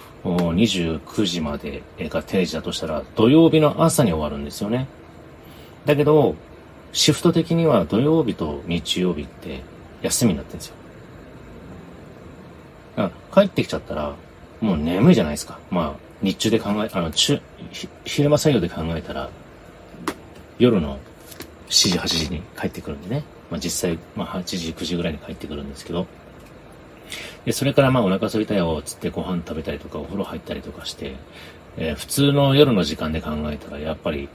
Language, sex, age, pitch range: Japanese, male, 40-59, 75-115 Hz